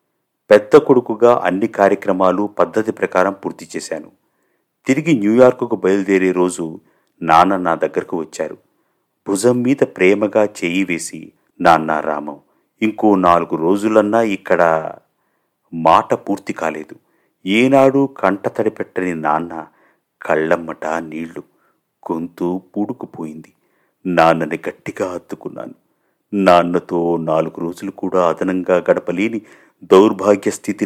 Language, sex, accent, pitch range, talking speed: Telugu, male, native, 80-105 Hz, 90 wpm